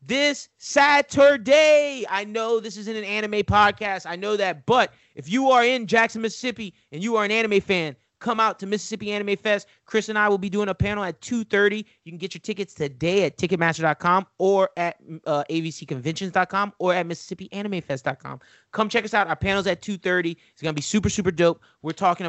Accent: American